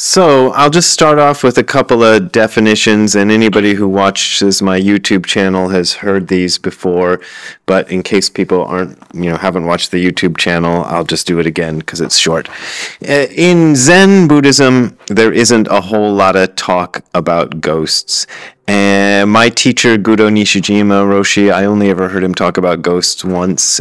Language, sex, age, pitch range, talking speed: English, male, 30-49, 90-110 Hz, 170 wpm